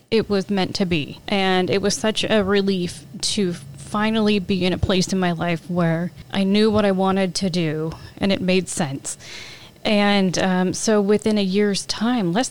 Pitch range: 180-210 Hz